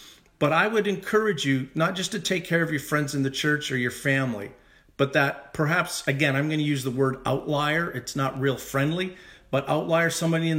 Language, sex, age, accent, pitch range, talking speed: English, male, 40-59, American, 130-165 Hz, 215 wpm